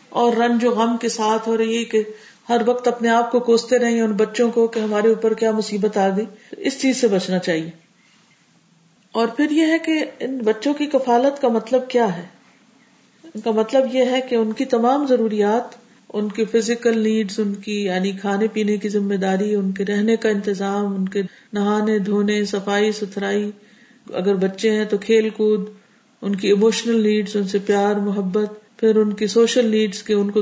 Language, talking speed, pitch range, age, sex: Urdu, 195 wpm, 200-235 Hz, 50-69, female